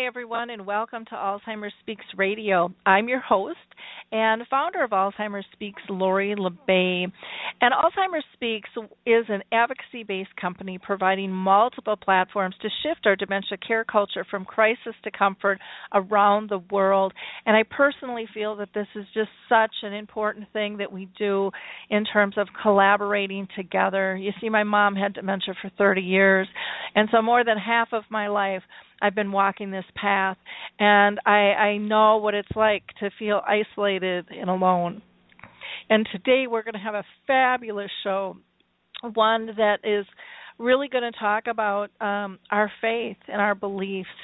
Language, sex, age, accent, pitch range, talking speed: English, female, 40-59, American, 195-220 Hz, 165 wpm